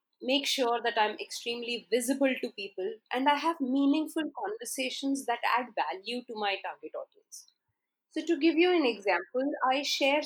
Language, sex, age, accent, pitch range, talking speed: English, female, 30-49, Indian, 250-325 Hz, 165 wpm